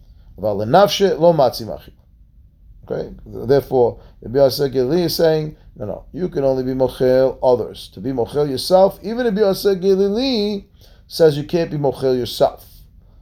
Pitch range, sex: 120-170 Hz, male